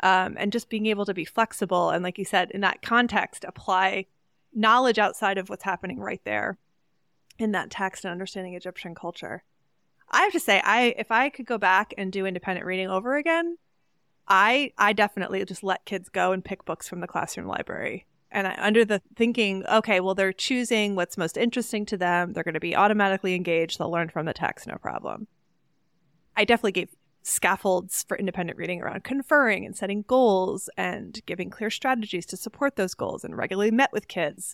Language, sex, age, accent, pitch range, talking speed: English, female, 20-39, American, 180-230 Hz, 195 wpm